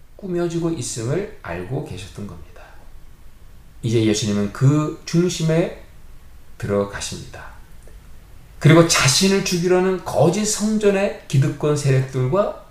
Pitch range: 90-155 Hz